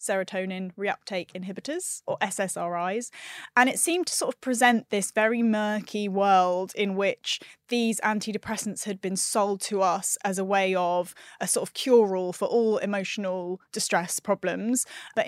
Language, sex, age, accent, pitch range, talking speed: English, female, 20-39, British, 185-220 Hz, 155 wpm